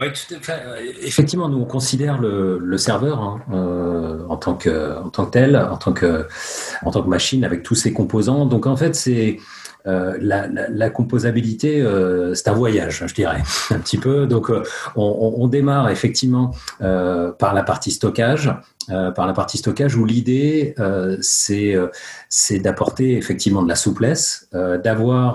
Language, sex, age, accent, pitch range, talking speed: French, male, 40-59, French, 95-125 Hz, 185 wpm